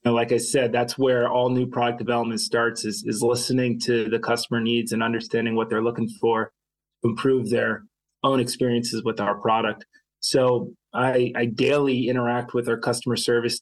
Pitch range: 120-130 Hz